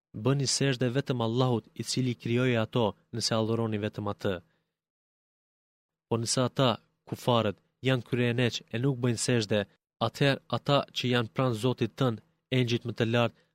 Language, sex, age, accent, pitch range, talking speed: Greek, male, 30-49, Turkish, 115-130 Hz, 145 wpm